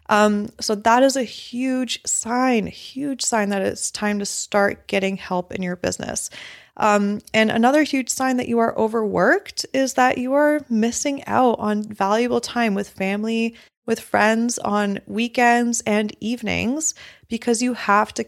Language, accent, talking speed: English, American, 160 wpm